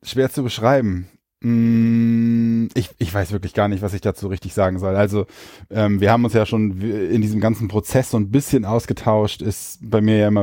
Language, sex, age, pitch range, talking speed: German, male, 10-29, 100-115 Hz, 205 wpm